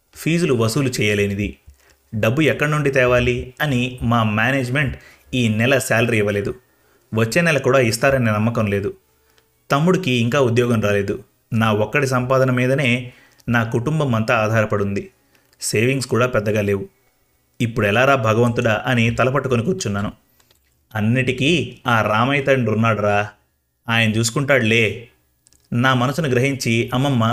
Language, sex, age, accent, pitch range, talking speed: Telugu, male, 30-49, native, 105-135 Hz, 110 wpm